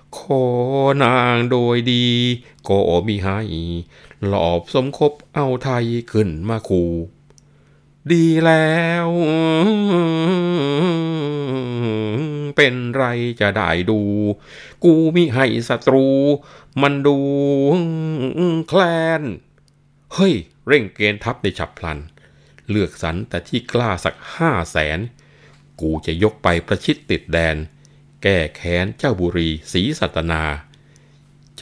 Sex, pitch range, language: male, 85-140 Hz, Thai